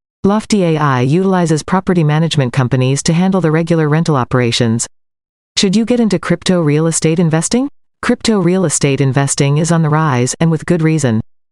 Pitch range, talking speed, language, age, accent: 140-180 Hz, 165 wpm, English, 40-59, American